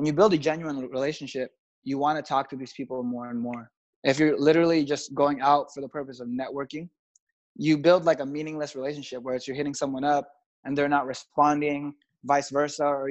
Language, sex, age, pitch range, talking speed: English, male, 20-39, 135-155 Hz, 210 wpm